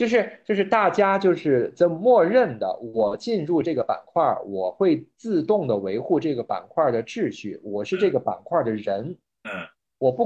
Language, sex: Chinese, male